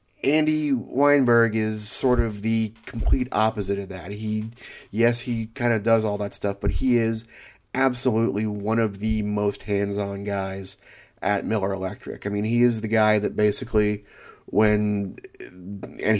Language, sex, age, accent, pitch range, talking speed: English, male, 30-49, American, 105-115 Hz, 160 wpm